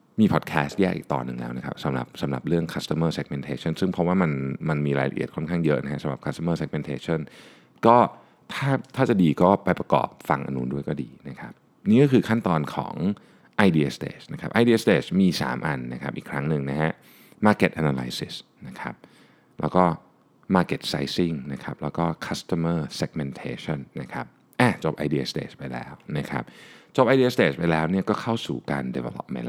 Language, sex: Thai, male